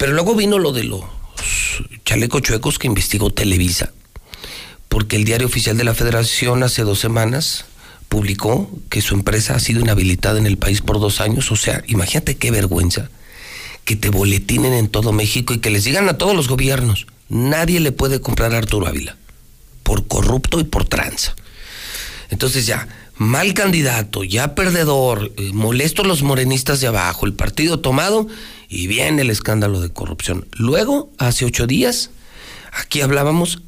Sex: male